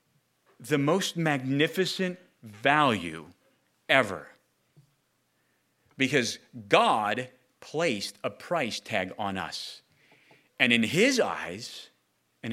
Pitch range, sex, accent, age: 105-150 Hz, male, American, 40-59